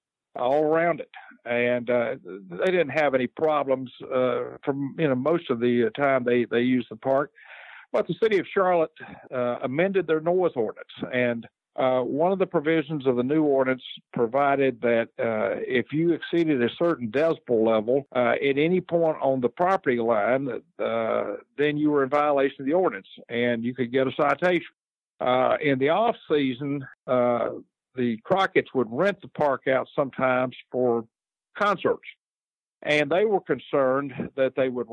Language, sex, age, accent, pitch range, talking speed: English, male, 60-79, American, 120-150 Hz, 170 wpm